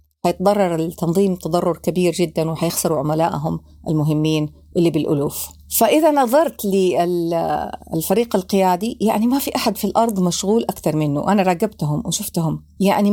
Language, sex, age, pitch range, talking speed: Arabic, female, 50-69, 170-210 Hz, 125 wpm